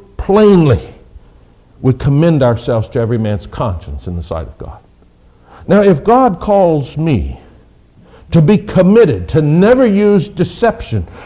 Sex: male